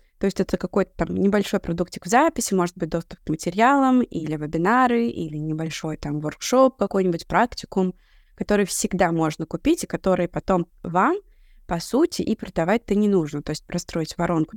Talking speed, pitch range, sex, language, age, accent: 165 wpm, 175-225 Hz, female, Russian, 20-39, native